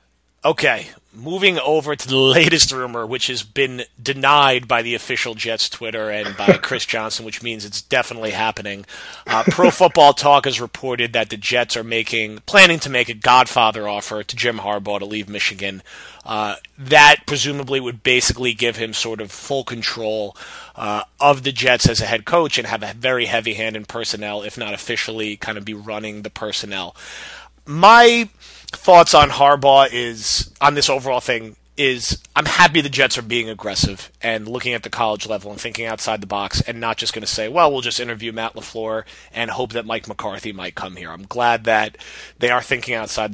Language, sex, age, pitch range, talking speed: English, male, 30-49, 110-140 Hz, 190 wpm